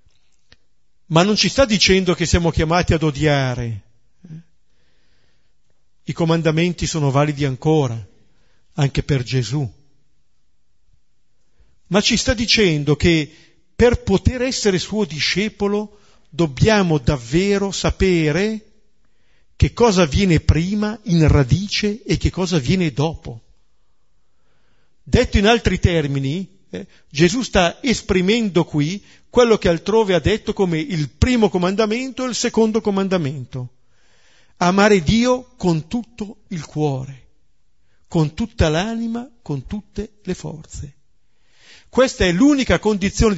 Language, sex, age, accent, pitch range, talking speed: Italian, male, 50-69, native, 145-210 Hz, 110 wpm